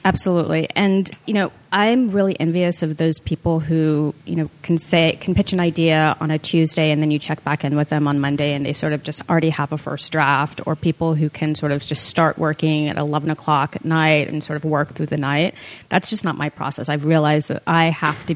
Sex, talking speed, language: female, 240 wpm, English